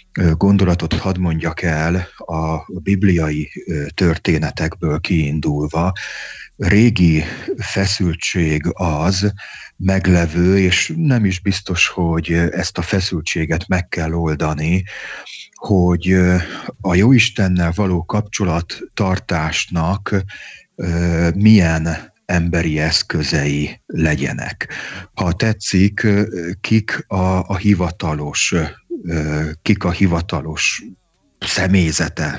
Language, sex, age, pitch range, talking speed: Hungarian, male, 30-49, 80-95 Hz, 80 wpm